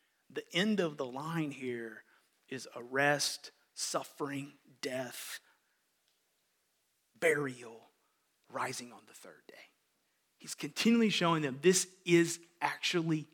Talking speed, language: 105 wpm, English